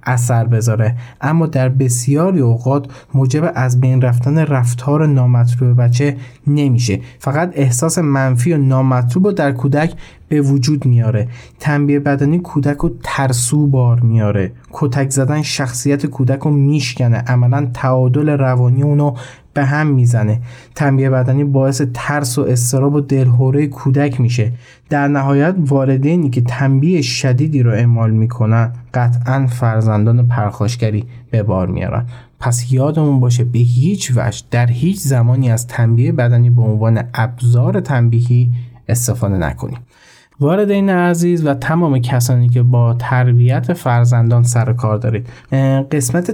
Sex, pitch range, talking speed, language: male, 120-145 Hz, 130 wpm, Persian